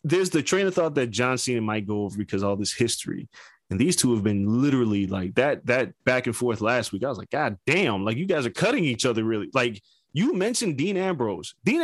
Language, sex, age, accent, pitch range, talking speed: English, male, 20-39, American, 115-170 Hz, 245 wpm